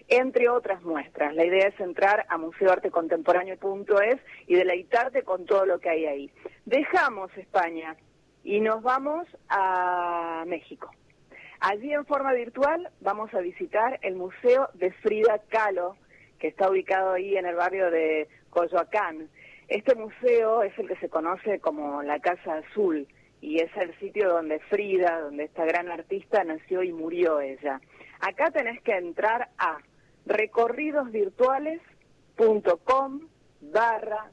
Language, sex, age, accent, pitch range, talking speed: Spanish, female, 40-59, Argentinian, 170-235 Hz, 135 wpm